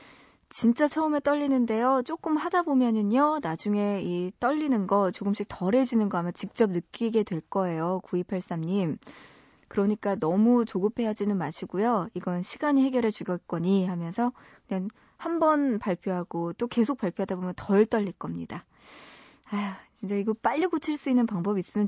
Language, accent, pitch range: Korean, native, 185-240 Hz